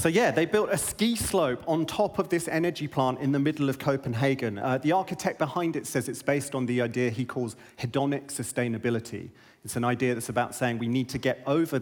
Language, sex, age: English, male, 30-49